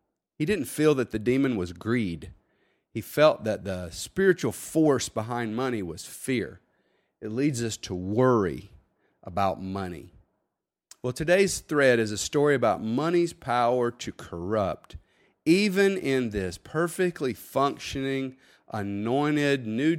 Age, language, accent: 40-59, English, American